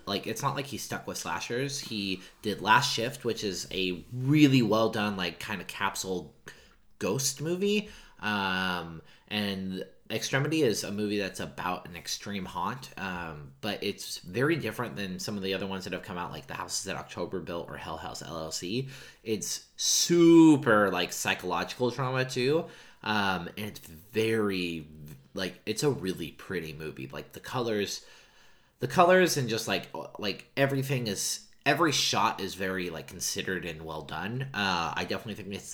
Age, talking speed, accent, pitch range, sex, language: 30-49, 170 wpm, American, 90-130 Hz, male, English